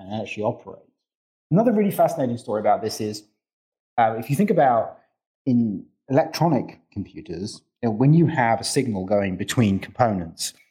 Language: English